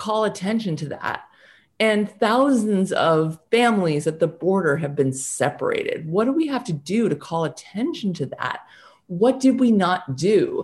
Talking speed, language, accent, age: 170 wpm, English, American, 30-49